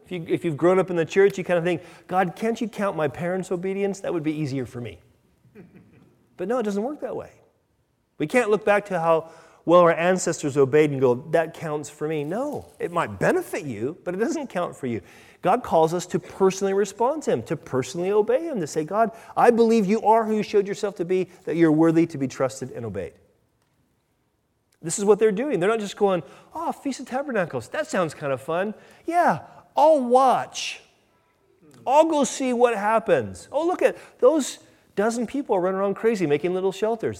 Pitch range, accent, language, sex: 165-235 Hz, American, English, male